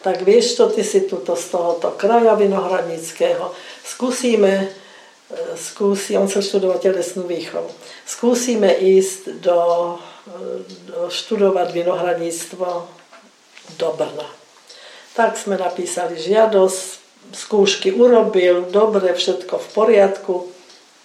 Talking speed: 95 wpm